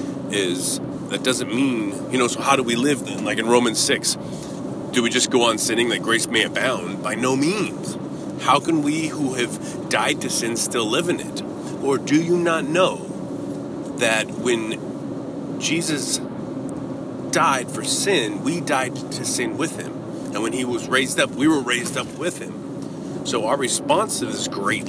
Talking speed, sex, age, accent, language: 185 wpm, male, 30-49, American, English